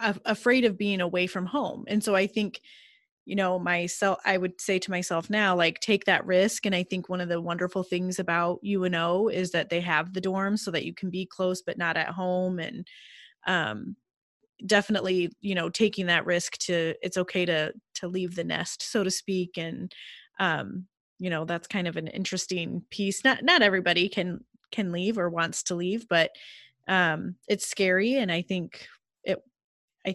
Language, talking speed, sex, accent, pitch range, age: English, 195 wpm, female, American, 180-215 Hz, 20-39